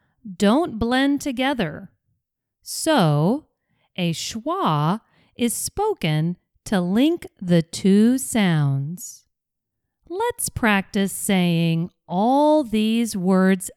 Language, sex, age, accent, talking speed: English, female, 40-59, American, 85 wpm